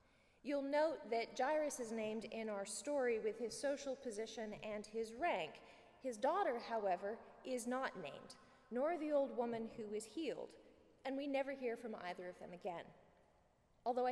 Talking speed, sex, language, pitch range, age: 165 wpm, female, English, 205-265 Hz, 20-39